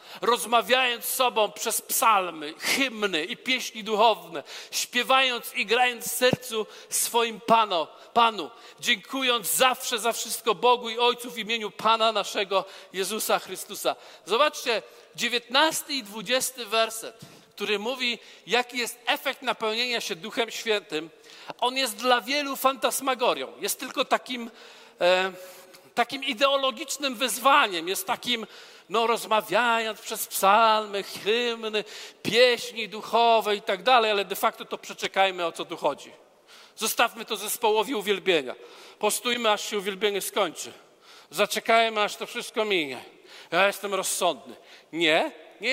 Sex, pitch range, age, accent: male, 210-255 Hz, 40-59, native